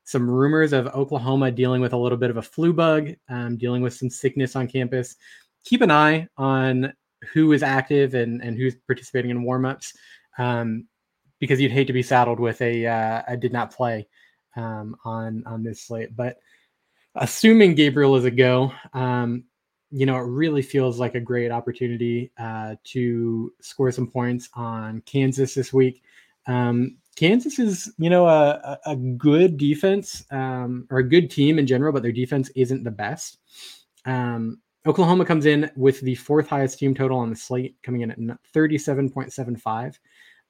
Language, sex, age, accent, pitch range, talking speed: English, male, 20-39, American, 120-140 Hz, 170 wpm